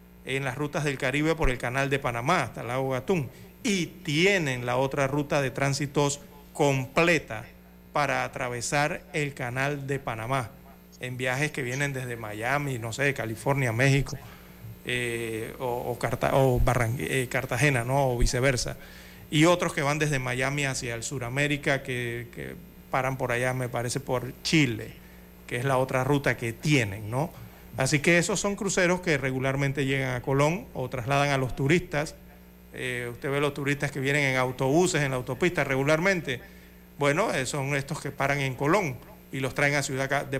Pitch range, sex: 125-145 Hz, male